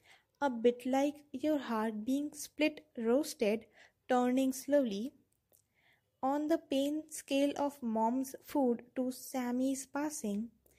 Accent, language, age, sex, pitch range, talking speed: Indian, English, 20-39, female, 230-285 Hz, 110 wpm